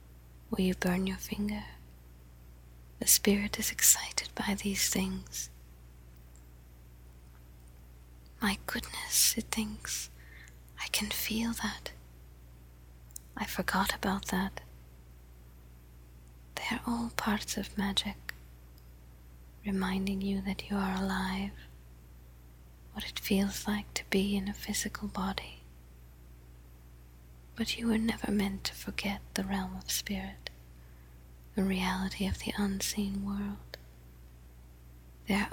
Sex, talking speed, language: female, 105 wpm, English